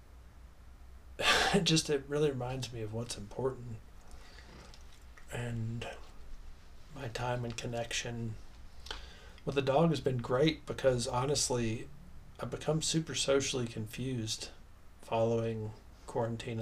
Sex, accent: male, American